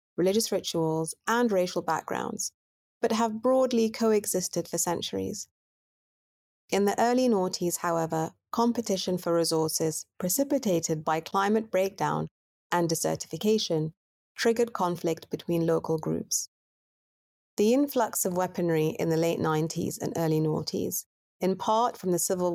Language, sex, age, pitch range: English, female, 30-49, 160-215 Hz